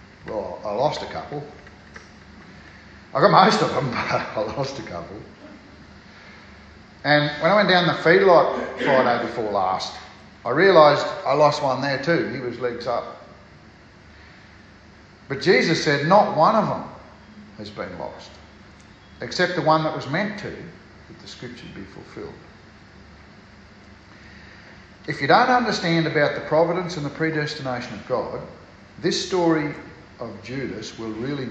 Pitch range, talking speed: 100-150 Hz, 145 wpm